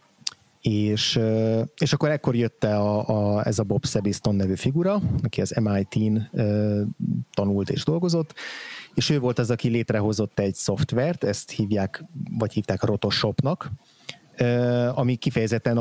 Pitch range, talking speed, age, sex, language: 105-120 Hz, 130 wpm, 30-49, male, Hungarian